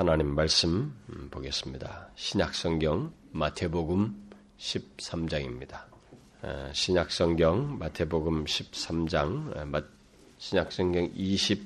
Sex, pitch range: male, 80-95 Hz